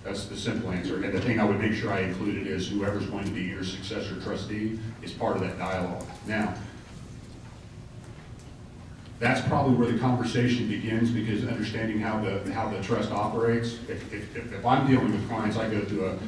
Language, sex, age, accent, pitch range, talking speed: English, male, 40-59, American, 100-115 Hz, 190 wpm